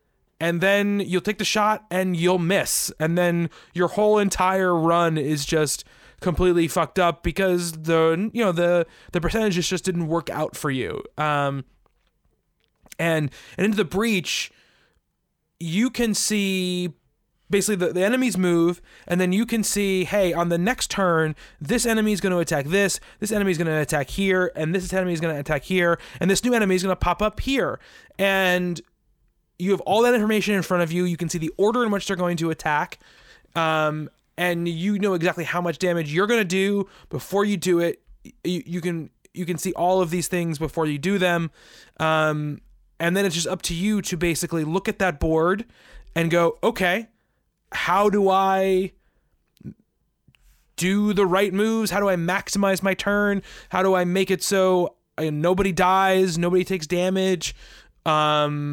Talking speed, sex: 185 wpm, male